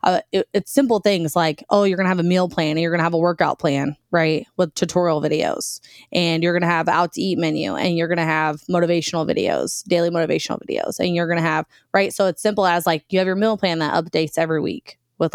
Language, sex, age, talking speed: English, female, 20-39, 235 wpm